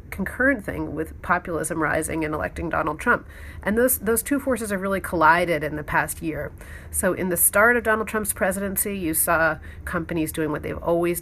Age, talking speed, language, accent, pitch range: 40-59, 195 wpm, English, American, 150-185 Hz